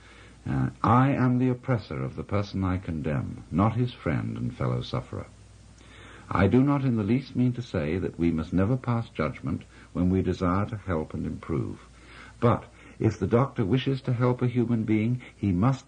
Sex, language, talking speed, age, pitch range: male, English, 190 wpm, 60-79, 90-125 Hz